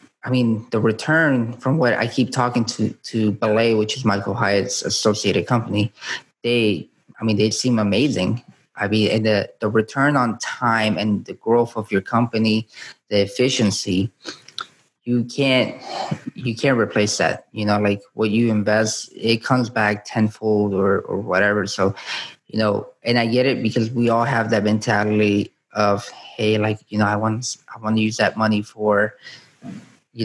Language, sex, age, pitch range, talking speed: English, male, 20-39, 105-115 Hz, 175 wpm